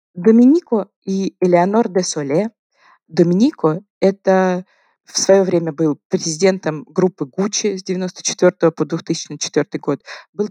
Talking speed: 115 wpm